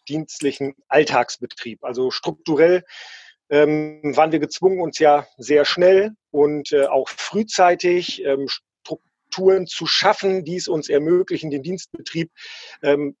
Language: German